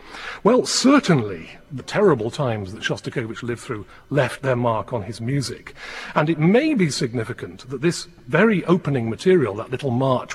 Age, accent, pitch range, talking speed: 40-59, British, 120-165 Hz, 160 wpm